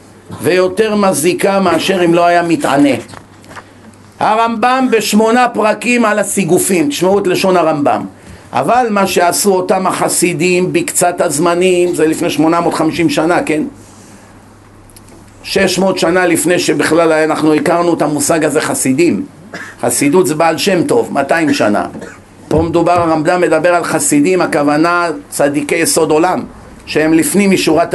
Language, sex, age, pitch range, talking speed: Hebrew, male, 50-69, 165-225 Hz, 125 wpm